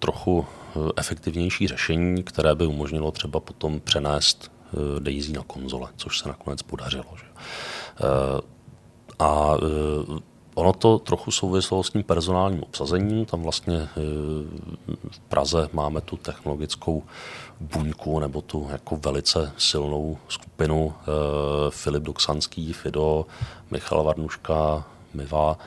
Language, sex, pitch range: Czech, male, 75-85 Hz